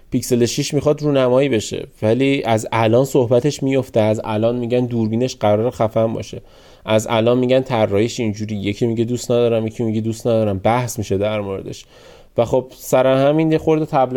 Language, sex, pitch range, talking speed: Persian, male, 110-140 Hz, 175 wpm